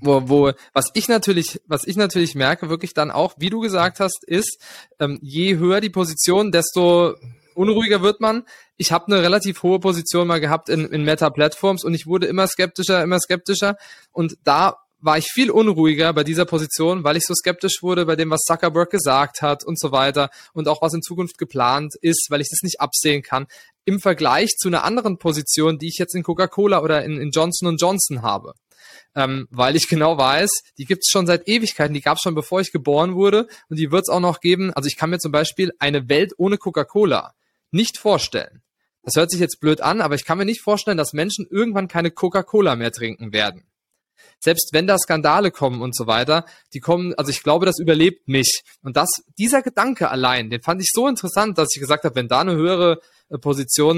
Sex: male